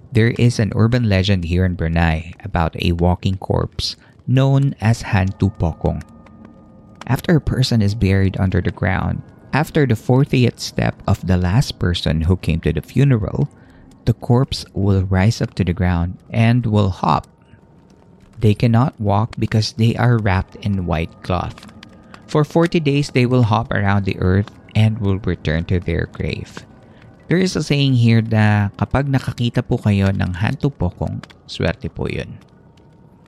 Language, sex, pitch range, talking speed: Filipino, male, 95-120 Hz, 165 wpm